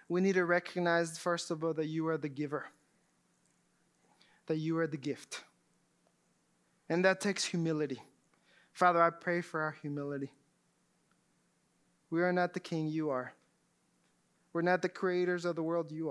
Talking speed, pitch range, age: 155 wpm, 160-200 Hz, 20-39